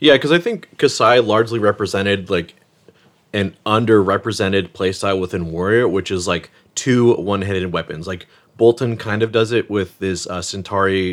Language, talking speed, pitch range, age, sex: English, 155 wpm, 95-110 Hz, 30-49, male